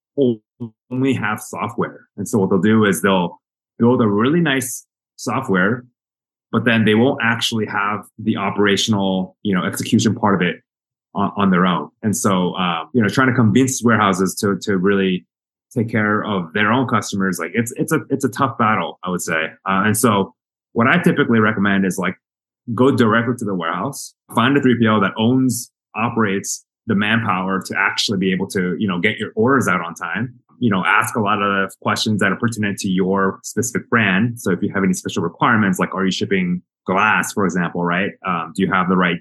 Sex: male